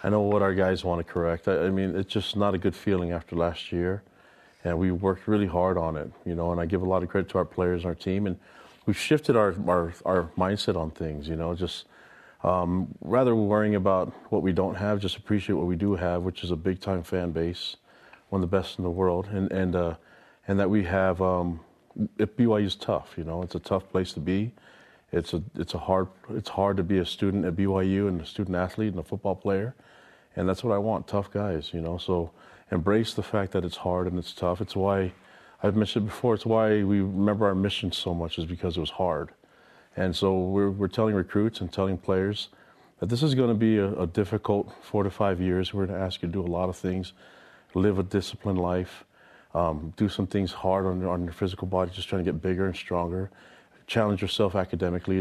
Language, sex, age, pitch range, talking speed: English, male, 30-49, 90-100 Hz, 235 wpm